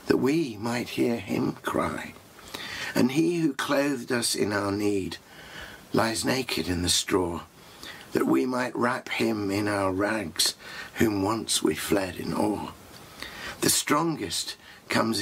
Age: 60-79